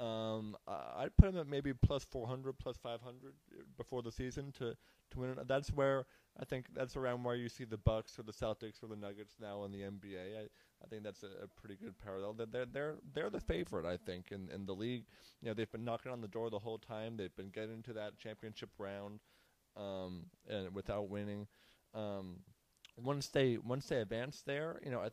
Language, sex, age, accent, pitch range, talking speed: English, male, 30-49, American, 100-125 Hz, 225 wpm